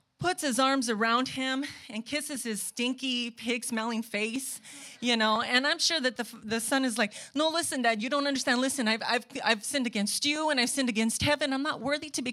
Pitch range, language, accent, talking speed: 200-255 Hz, English, American, 220 wpm